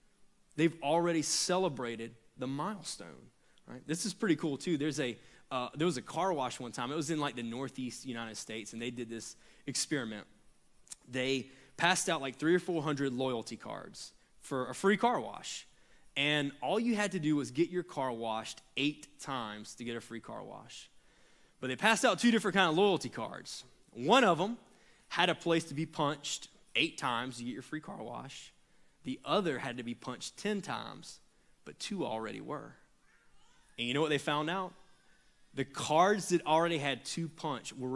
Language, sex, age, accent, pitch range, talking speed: English, male, 20-39, American, 125-170 Hz, 190 wpm